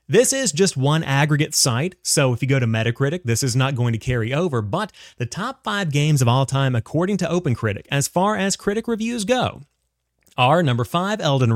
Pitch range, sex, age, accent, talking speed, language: 120-160 Hz, male, 30-49, American, 210 wpm, English